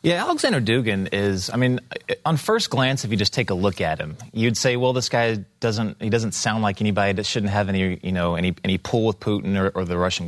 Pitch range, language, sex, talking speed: 100-135 Hz, English, male, 250 wpm